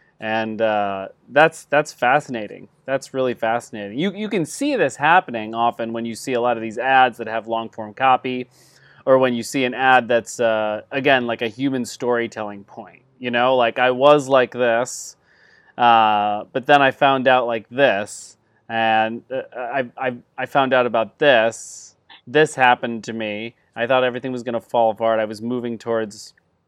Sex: male